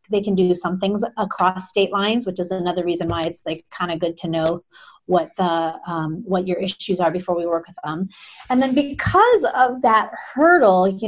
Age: 30-49